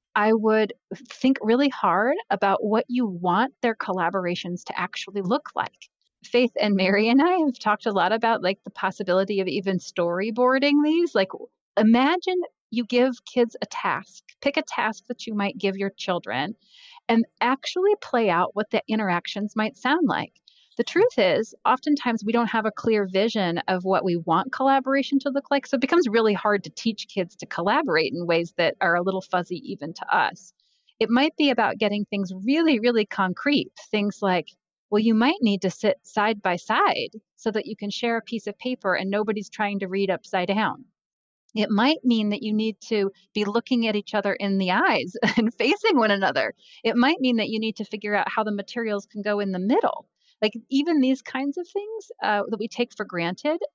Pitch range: 190-250 Hz